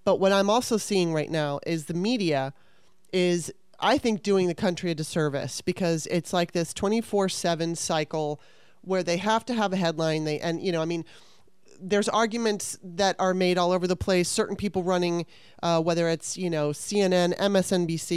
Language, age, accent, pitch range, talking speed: English, 30-49, American, 160-195 Hz, 185 wpm